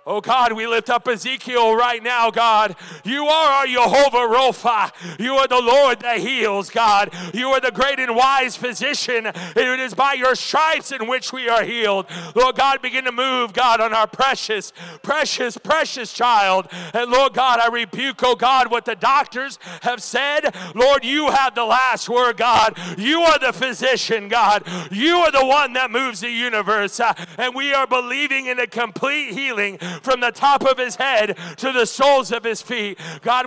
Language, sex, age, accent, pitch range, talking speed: English, male, 40-59, American, 225-270 Hz, 185 wpm